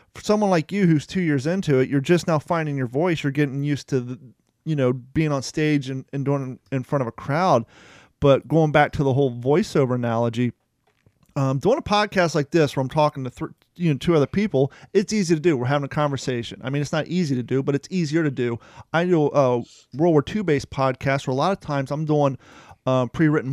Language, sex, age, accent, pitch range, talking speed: English, male, 30-49, American, 135-165 Hz, 245 wpm